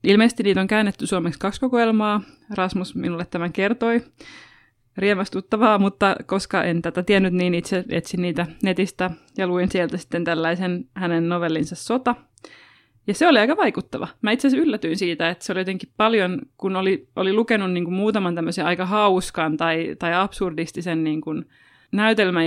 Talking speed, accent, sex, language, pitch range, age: 160 wpm, native, female, Finnish, 175-195 Hz, 20-39